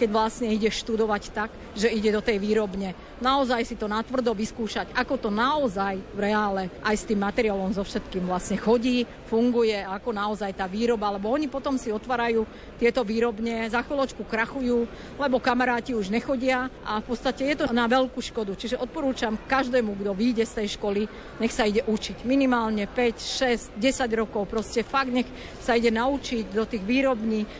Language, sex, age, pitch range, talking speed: Slovak, female, 50-69, 205-245 Hz, 175 wpm